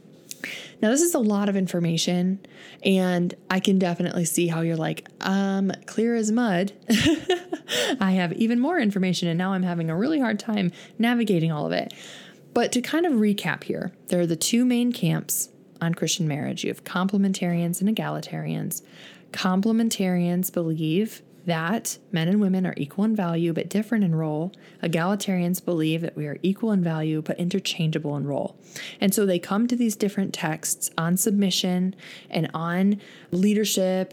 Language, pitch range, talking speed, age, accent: English, 170-215 Hz, 165 wpm, 10-29, American